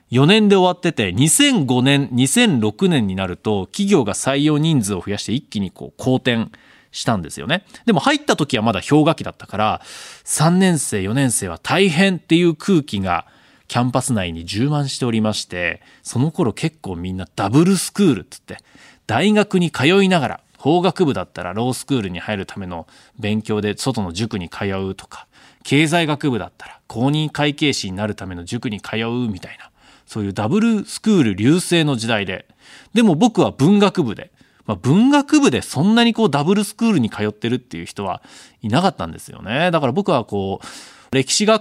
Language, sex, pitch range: Japanese, male, 105-175 Hz